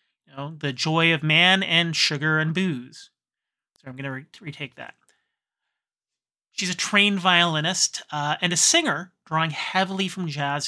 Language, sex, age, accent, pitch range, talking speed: English, male, 30-49, American, 150-200 Hz, 145 wpm